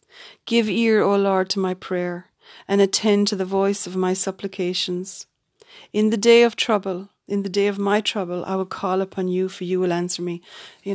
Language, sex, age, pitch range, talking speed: English, female, 40-59, 180-195 Hz, 205 wpm